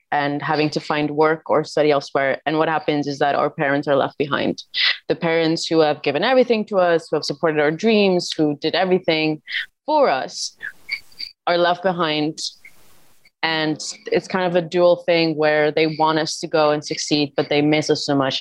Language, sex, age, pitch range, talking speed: Arabic, female, 20-39, 150-175 Hz, 195 wpm